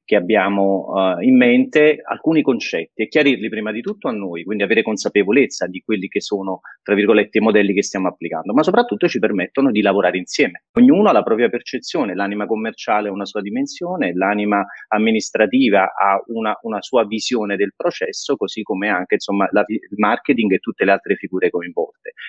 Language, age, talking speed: Italian, 30-49, 185 wpm